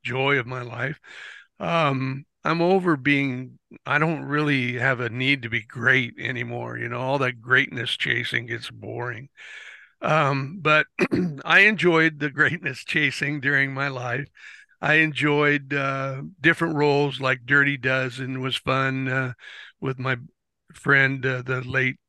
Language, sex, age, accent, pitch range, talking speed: English, male, 60-79, American, 130-145 Hz, 145 wpm